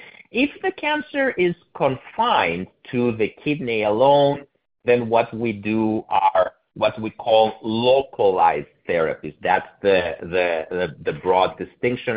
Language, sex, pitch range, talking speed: English, male, 105-145 Hz, 130 wpm